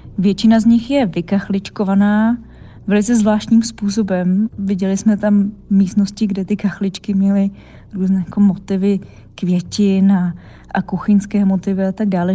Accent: native